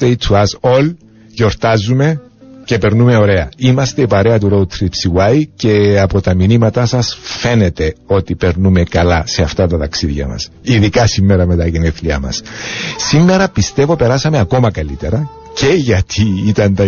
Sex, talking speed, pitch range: male, 150 wpm, 95-130 Hz